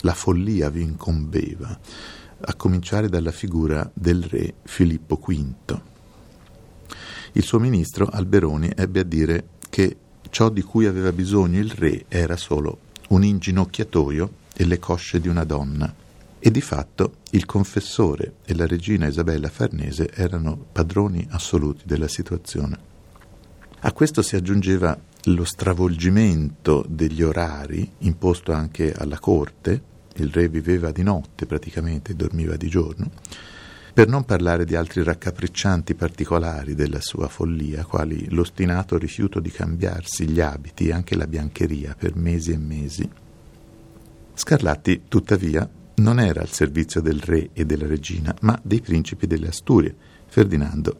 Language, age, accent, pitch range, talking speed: Italian, 50-69, native, 80-95 Hz, 135 wpm